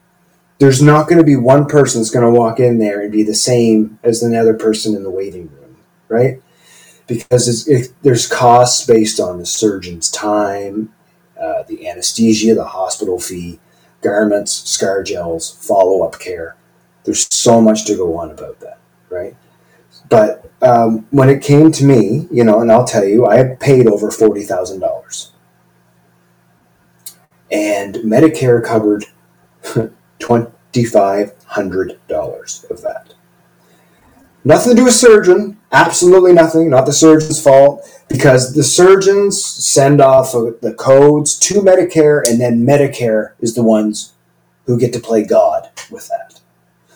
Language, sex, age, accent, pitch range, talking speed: English, male, 30-49, American, 105-160 Hz, 145 wpm